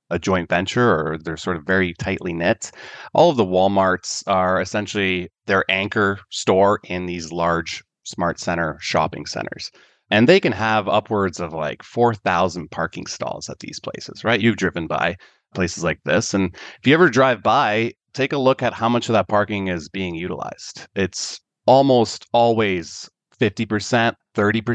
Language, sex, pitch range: English, male, 85-115 Hz